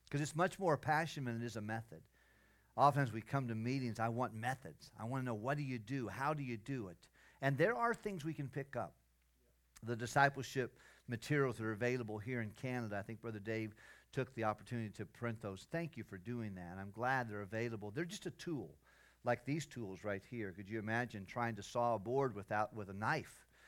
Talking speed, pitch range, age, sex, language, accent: 225 wpm, 105-130 Hz, 50-69, male, English, American